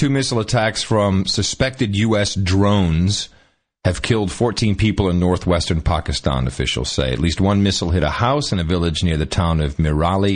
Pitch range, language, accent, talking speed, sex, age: 85-110 Hz, English, American, 180 wpm, male, 40-59